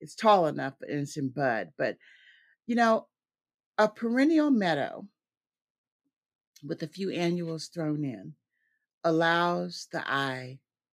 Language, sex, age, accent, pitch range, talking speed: English, female, 50-69, American, 140-200 Hz, 120 wpm